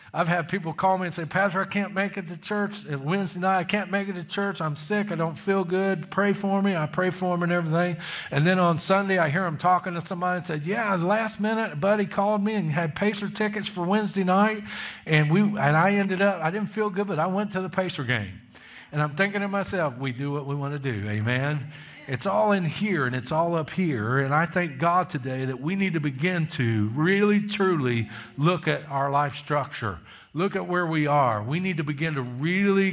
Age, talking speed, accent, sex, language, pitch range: 50-69, 235 wpm, American, male, English, 145-195 Hz